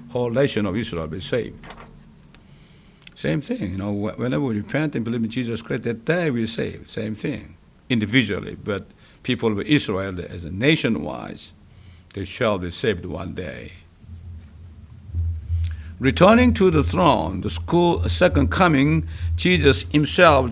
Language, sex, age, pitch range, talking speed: English, male, 60-79, 85-135 Hz, 145 wpm